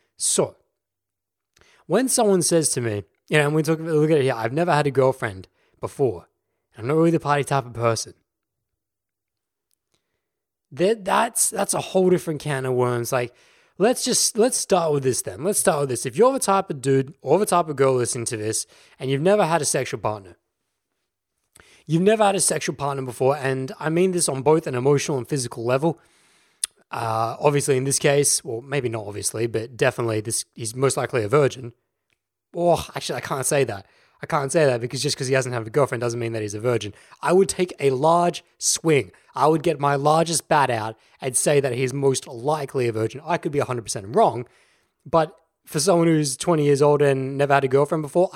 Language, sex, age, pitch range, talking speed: English, male, 20-39, 120-165 Hz, 215 wpm